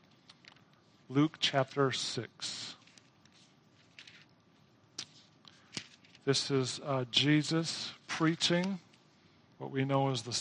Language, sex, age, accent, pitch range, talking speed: English, male, 40-59, American, 130-165 Hz, 75 wpm